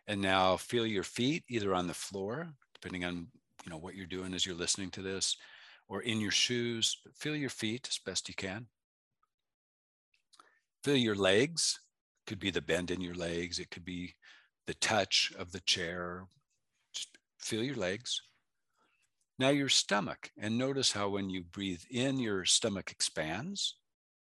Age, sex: 50-69, male